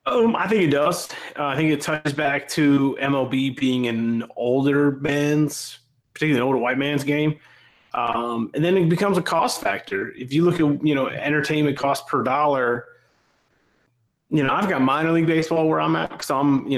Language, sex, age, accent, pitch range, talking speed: English, male, 30-49, American, 125-150 Hz, 195 wpm